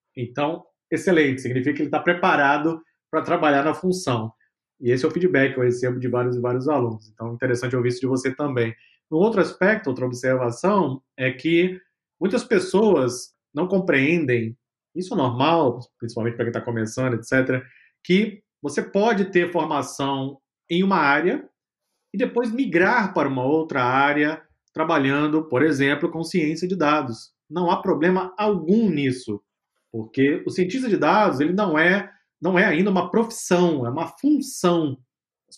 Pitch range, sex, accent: 130-180 Hz, male, Brazilian